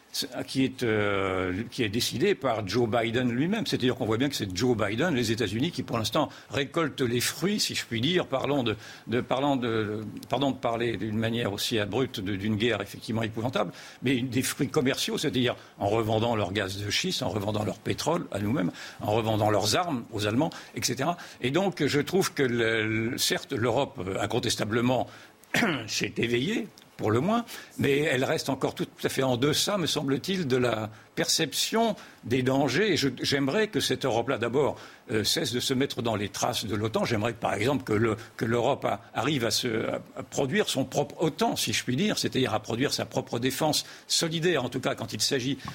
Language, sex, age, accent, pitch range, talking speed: French, male, 60-79, French, 110-140 Hz, 200 wpm